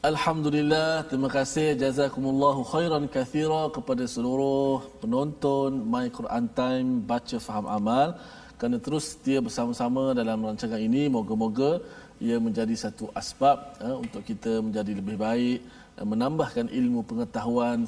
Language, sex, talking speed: Malayalam, male, 120 wpm